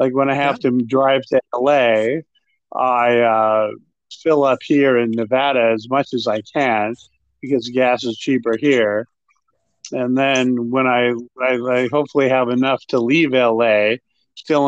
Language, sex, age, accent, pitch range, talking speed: English, male, 50-69, American, 115-135 Hz, 155 wpm